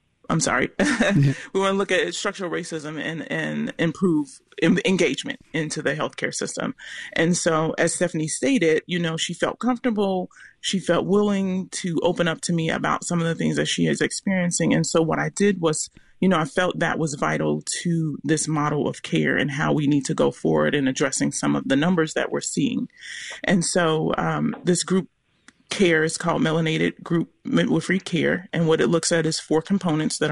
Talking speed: 200 wpm